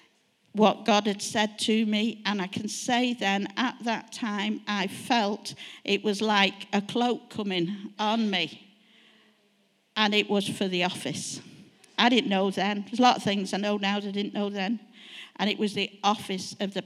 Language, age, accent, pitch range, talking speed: English, 50-69, British, 200-245 Hz, 190 wpm